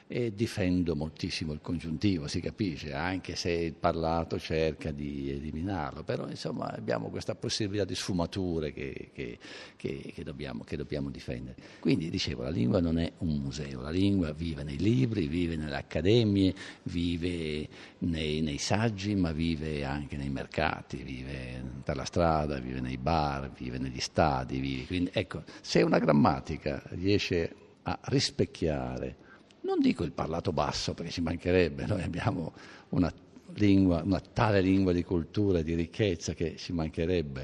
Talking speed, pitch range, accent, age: 150 wpm, 75-95 Hz, native, 50-69